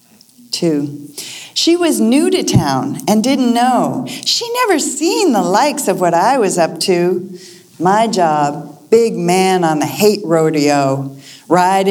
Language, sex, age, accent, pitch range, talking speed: English, female, 50-69, American, 155-200 Hz, 145 wpm